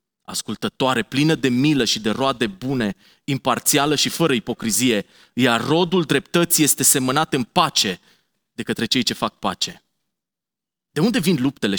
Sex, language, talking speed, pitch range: male, Romanian, 150 wpm, 110-150 Hz